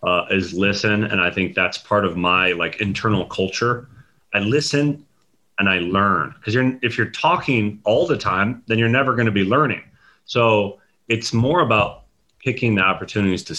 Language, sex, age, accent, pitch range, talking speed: English, male, 30-49, American, 90-115 Hz, 180 wpm